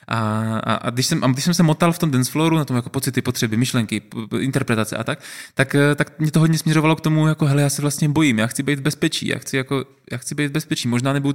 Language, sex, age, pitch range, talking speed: Czech, male, 20-39, 120-150 Hz, 270 wpm